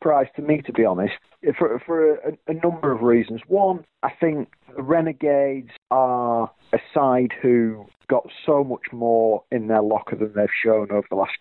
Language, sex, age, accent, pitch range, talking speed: English, male, 40-59, British, 105-140 Hz, 185 wpm